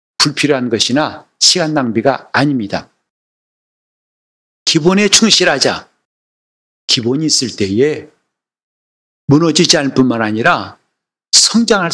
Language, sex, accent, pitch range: Korean, male, native, 115-165 Hz